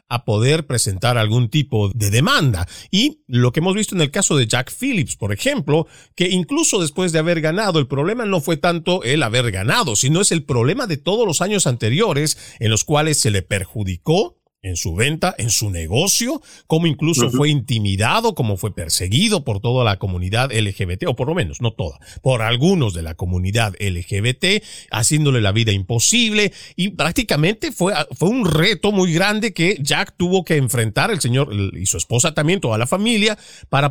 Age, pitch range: 40-59, 115-175 Hz